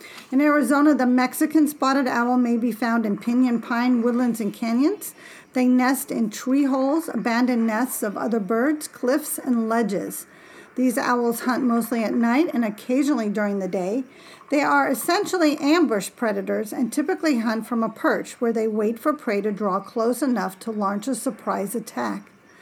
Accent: American